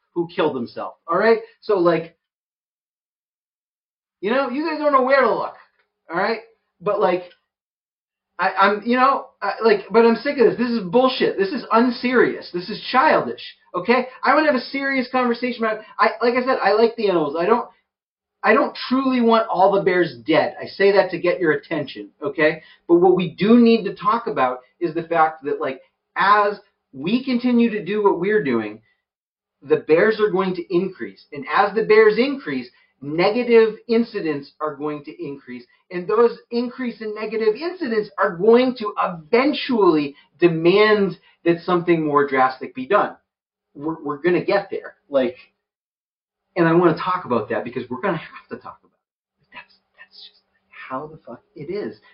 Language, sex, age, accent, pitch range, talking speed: English, male, 30-49, American, 170-240 Hz, 180 wpm